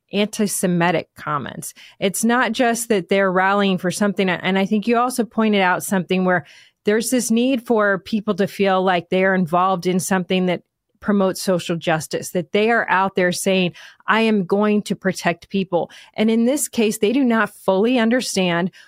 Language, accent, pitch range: English, American, 185-230 Hz